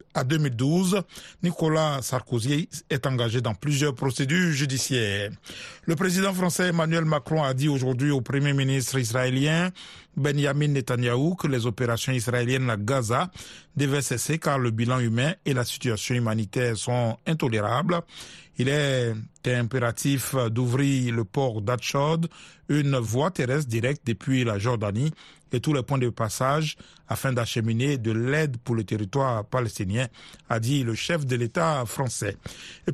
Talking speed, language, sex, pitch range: 140 wpm, French, male, 120-150 Hz